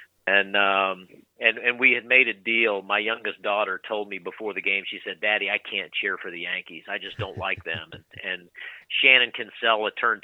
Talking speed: 210 wpm